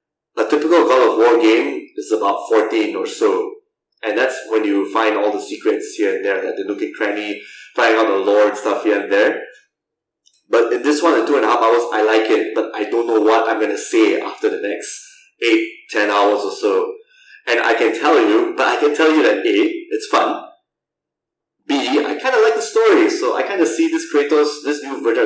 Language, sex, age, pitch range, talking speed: English, male, 20-39, 315-435 Hz, 230 wpm